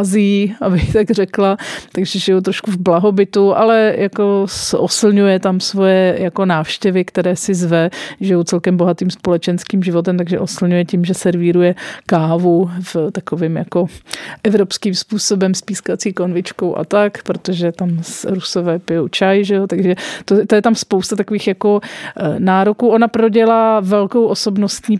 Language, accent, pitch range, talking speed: Czech, native, 180-205 Hz, 145 wpm